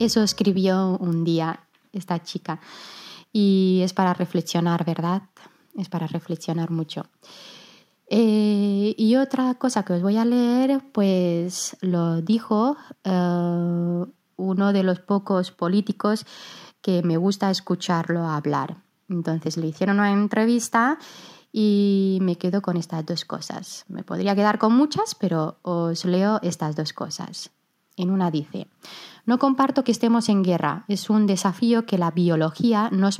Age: 20-39